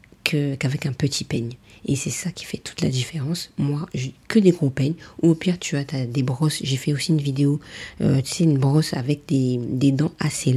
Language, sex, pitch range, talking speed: French, female, 135-170 Hz, 220 wpm